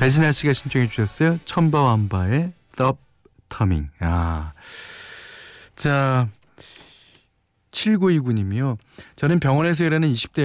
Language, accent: Korean, native